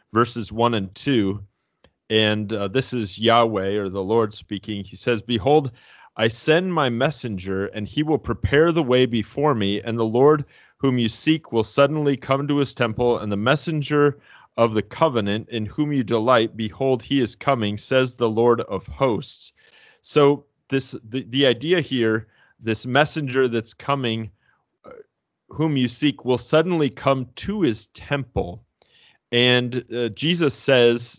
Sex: male